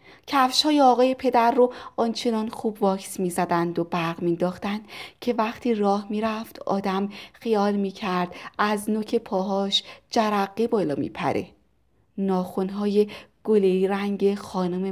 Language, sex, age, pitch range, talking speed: Persian, female, 30-49, 180-215 Hz, 115 wpm